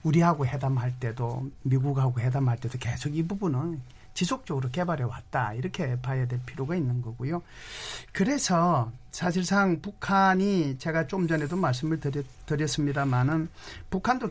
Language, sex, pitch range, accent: Korean, male, 140-180 Hz, native